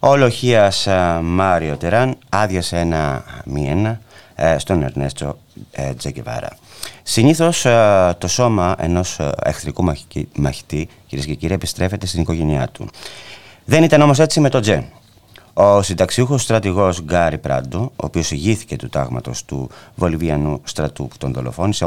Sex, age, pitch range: male, 30-49, 75-105 Hz